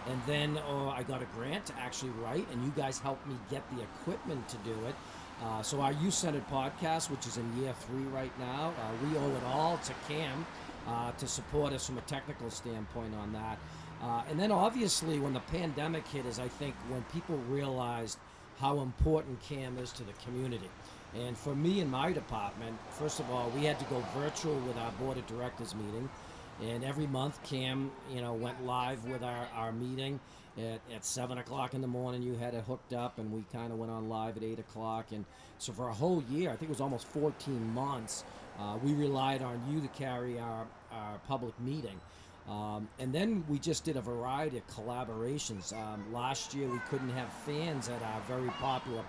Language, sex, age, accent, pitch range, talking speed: English, male, 50-69, American, 115-145 Hz, 210 wpm